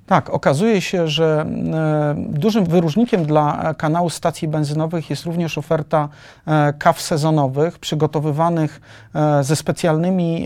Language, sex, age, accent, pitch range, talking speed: Polish, male, 40-59, native, 145-165 Hz, 105 wpm